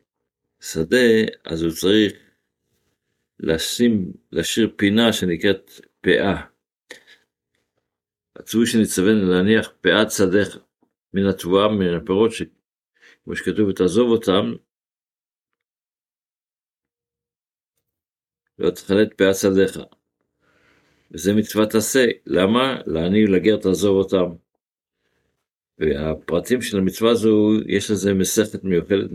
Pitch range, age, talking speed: 85-105 Hz, 50-69, 85 wpm